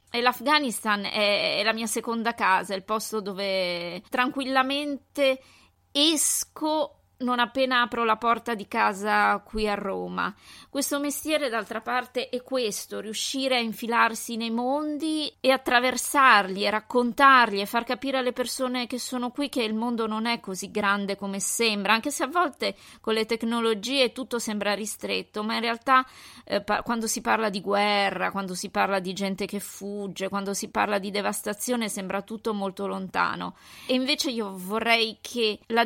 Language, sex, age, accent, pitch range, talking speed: Italian, female, 20-39, native, 205-250 Hz, 160 wpm